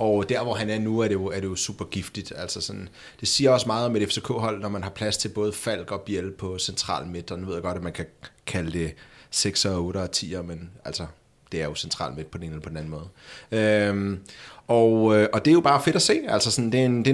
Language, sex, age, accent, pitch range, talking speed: Danish, male, 30-49, native, 105-130 Hz, 275 wpm